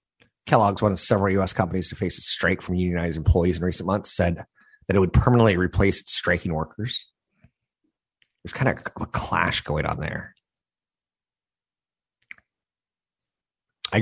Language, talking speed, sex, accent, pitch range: English, 140 wpm, male, American, 80-100 Hz